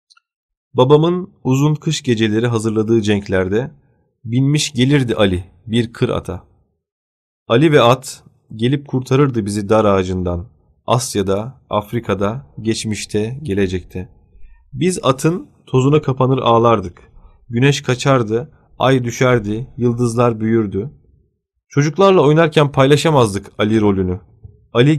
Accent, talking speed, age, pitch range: native, 100 wpm, 30-49, 100-130 Hz